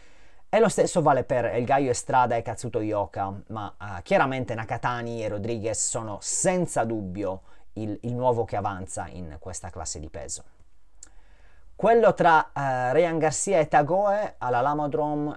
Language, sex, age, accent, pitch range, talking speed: Italian, male, 30-49, native, 105-140 Hz, 150 wpm